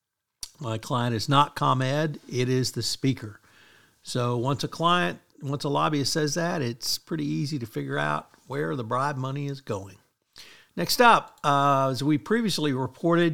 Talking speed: 165 wpm